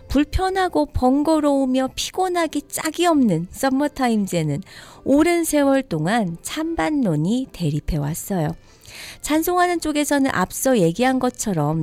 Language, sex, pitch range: Korean, female, 180-280 Hz